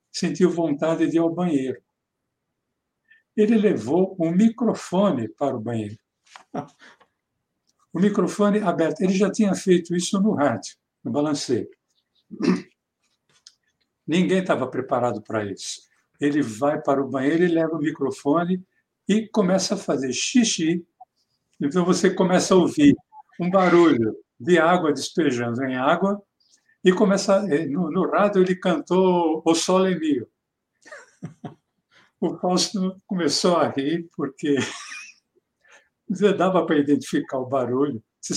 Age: 60-79